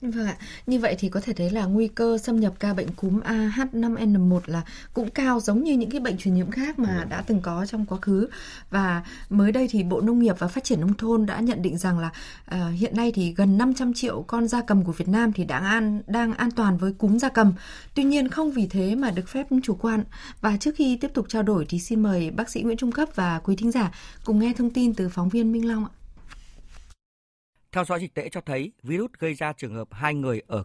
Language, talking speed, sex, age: Vietnamese, 250 wpm, female, 20-39